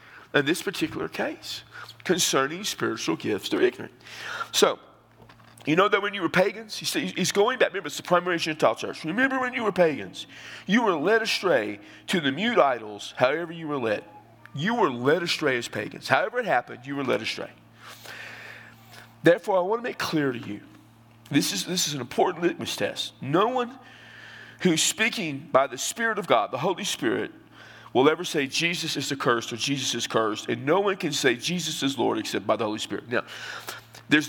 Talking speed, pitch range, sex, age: 190 wpm, 130-185 Hz, male, 40-59